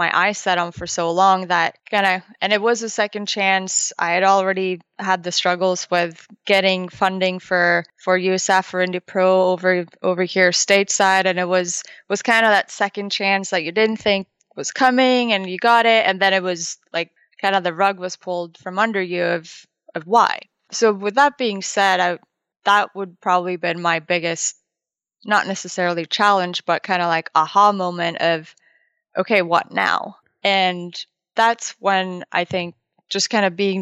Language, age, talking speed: English, 20-39, 185 wpm